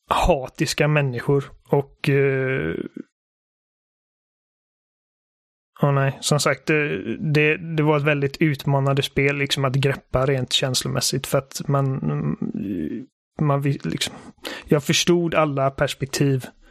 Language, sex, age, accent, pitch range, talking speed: Swedish, male, 30-49, native, 135-155 Hz, 105 wpm